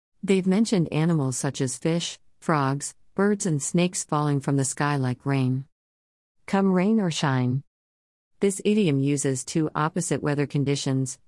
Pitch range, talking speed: 130-165 Hz, 145 wpm